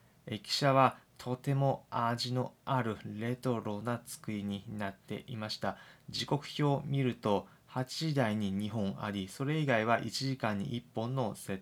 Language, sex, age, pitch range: Japanese, male, 20-39, 105-135 Hz